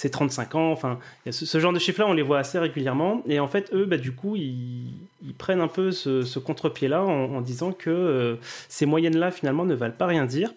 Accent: French